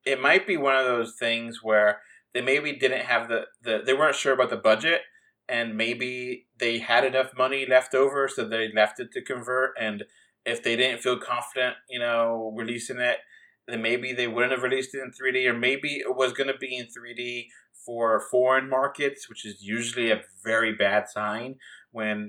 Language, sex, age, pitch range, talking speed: English, male, 30-49, 115-135 Hz, 195 wpm